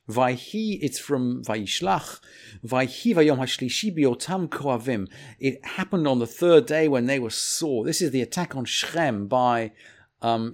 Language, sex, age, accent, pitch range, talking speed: English, male, 50-69, British, 120-180 Hz, 155 wpm